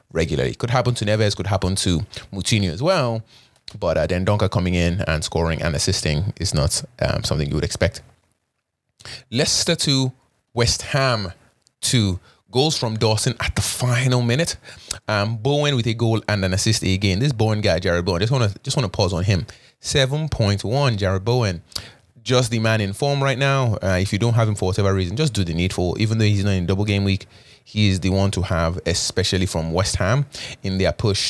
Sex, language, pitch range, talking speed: male, English, 95-120 Hz, 205 wpm